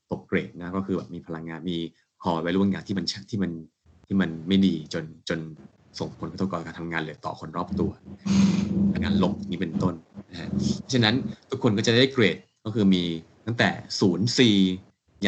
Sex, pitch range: male, 90-100 Hz